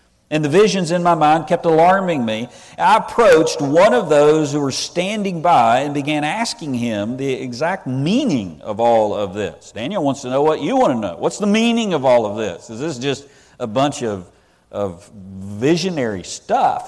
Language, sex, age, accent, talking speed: English, male, 50-69, American, 190 wpm